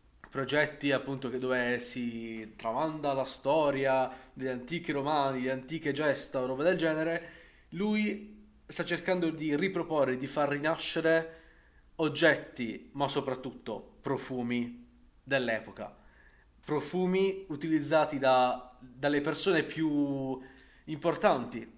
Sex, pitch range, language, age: male, 130-160 Hz, Italian, 30-49